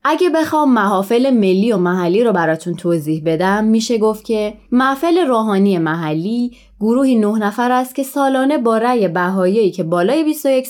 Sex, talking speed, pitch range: female, 155 wpm, 190-250 Hz